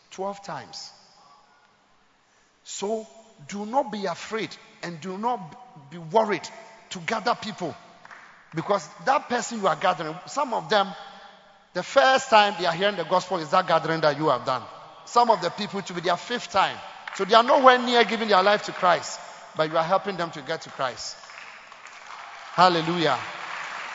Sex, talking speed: male, 175 wpm